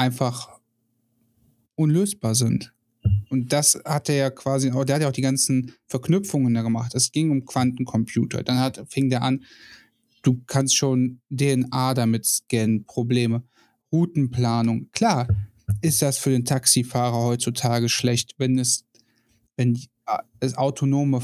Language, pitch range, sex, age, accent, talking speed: German, 115-140 Hz, male, 10-29, German, 135 wpm